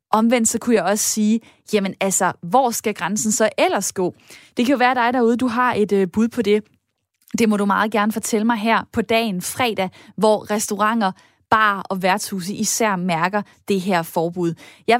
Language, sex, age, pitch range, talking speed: Danish, female, 20-39, 195-240 Hz, 190 wpm